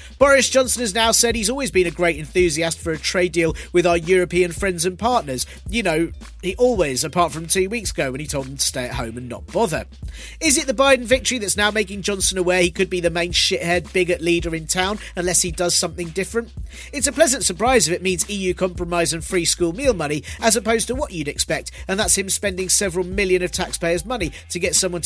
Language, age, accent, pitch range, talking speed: English, 40-59, British, 165-225 Hz, 235 wpm